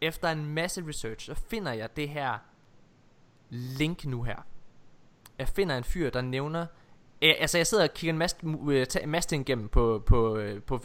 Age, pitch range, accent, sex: 20-39, 120-160 Hz, native, male